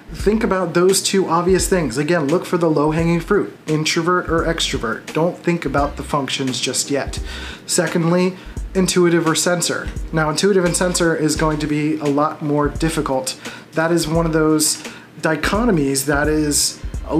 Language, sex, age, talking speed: English, male, 30-49, 165 wpm